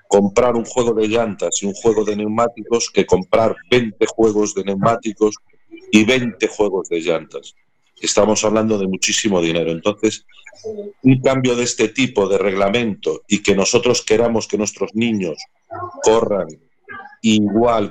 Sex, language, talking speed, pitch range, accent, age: male, Spanish, 145 wpm, 100-120 Hz, Spanish, 50-69